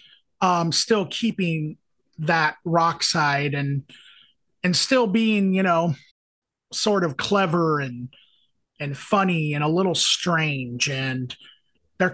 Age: 30-49